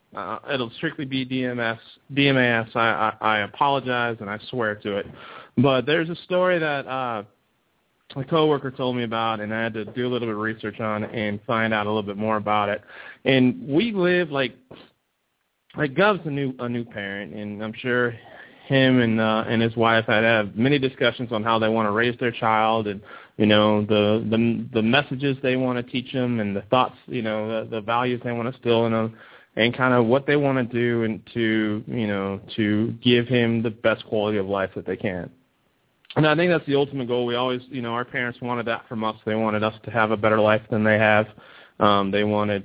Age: 30-49